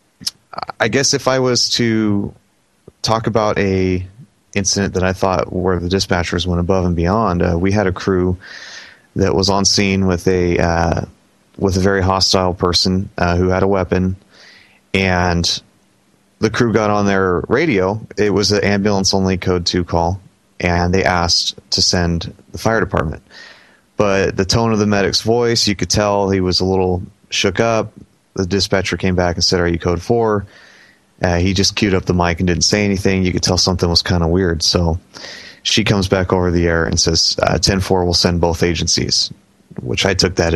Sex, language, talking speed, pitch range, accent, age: male, English, 190 wpm, 90-100 Hz, American, 30-49